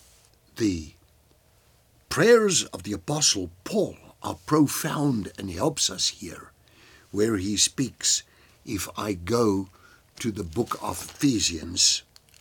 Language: English